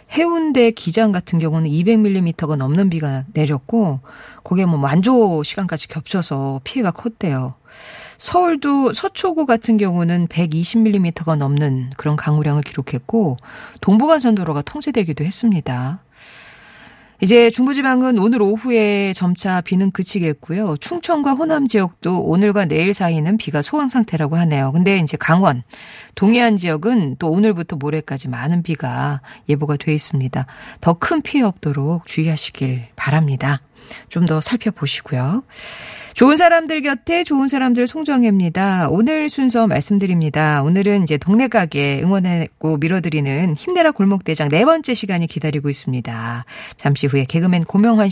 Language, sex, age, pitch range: Korean, female, 40-59, 155-230 Hz